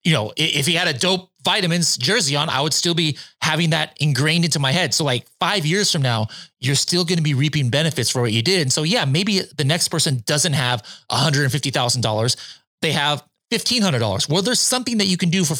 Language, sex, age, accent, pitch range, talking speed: English, male, 30-49, American, 120-160 Hz, 240 wpm